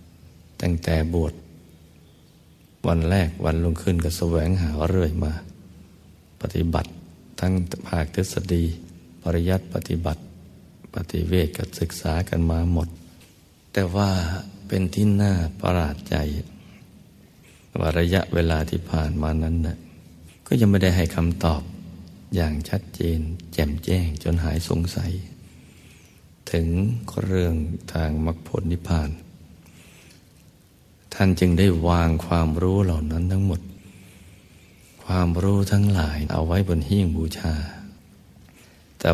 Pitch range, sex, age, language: 80-90 Hz, male, 60-79, Thai